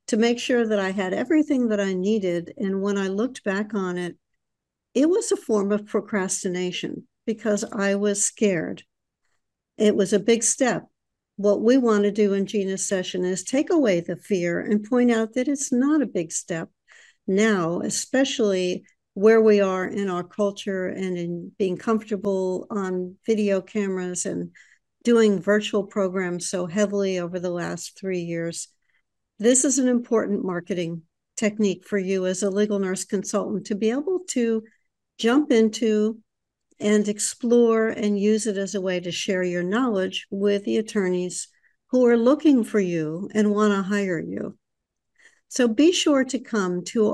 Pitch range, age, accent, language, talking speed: 190-230 Hz, 60-79, American, English, 165 wpm